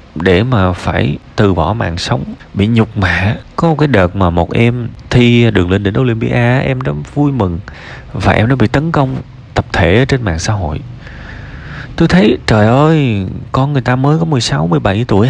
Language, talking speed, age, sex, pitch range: Vietnamese, 195 wpm, 20-39, male, 90-130 Hz